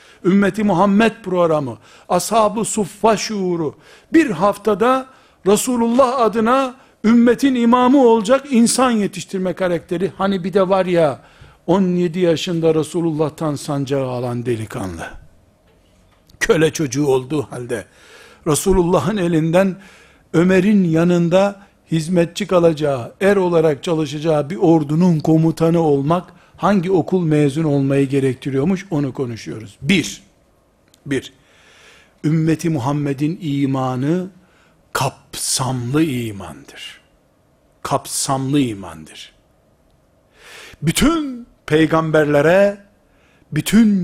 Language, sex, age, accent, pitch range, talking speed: Turkish, male, 60-79, native, 145-200 Hz, 85 wpm